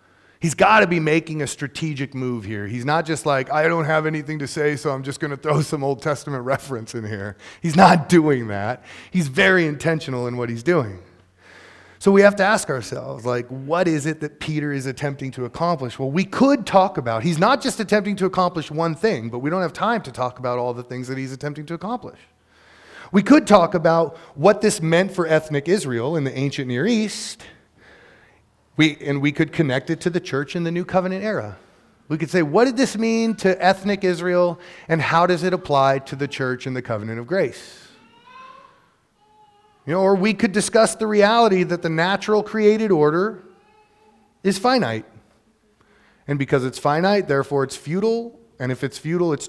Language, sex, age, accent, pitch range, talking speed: English, male, 30-49, American, 130-190 Hz, 200 wpm